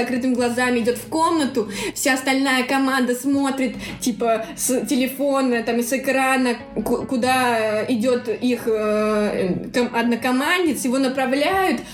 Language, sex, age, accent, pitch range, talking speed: Russian, female, 20-39, native, 215-255 Hz, 125 wpm